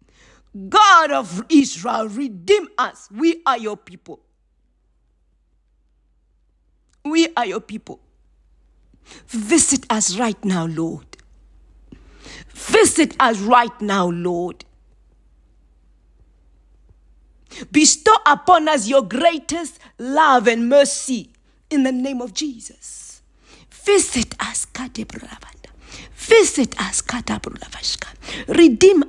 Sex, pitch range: female, 215-300 Hz